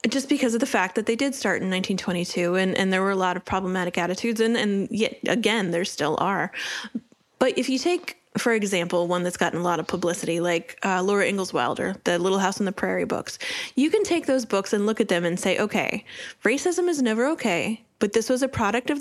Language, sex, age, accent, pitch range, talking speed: English, female, 10-29, American, 190-250 Hz, 235 wpm